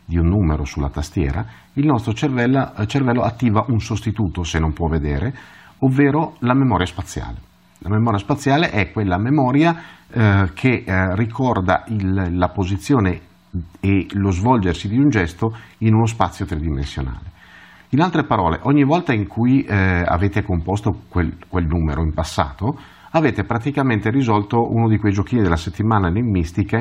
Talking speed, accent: 150 wpm, native